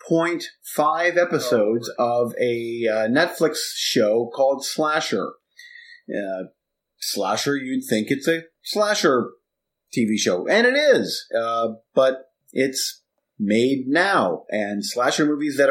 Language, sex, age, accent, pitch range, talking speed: English, male, 30-49, American, 120-170 Hz, 110 wpm